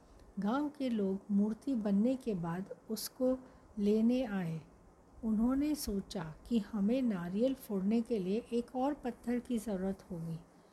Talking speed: 135 wpm